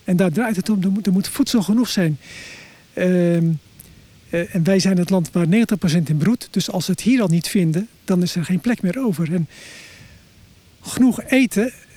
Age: 50-69